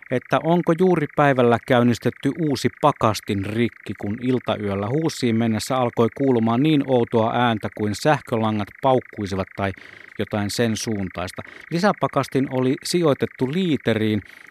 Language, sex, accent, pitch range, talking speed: Finnish, male, native, 95-125 Hz, 115 wpm